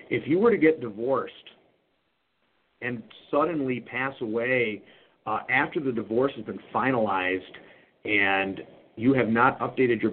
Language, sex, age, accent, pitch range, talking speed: English, male, 50-69, American, 115-145 Hz, 135 wpm